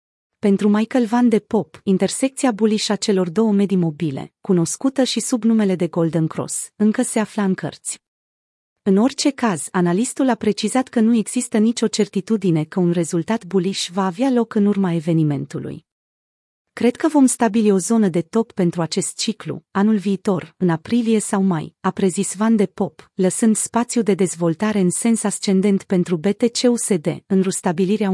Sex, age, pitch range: female, 30-49, 180-225 Hz